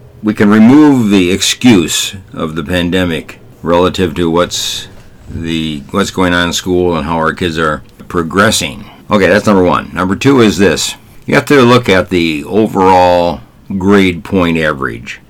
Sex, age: male, 60-79